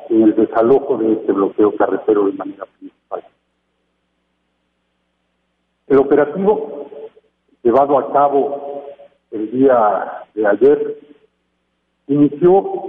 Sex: male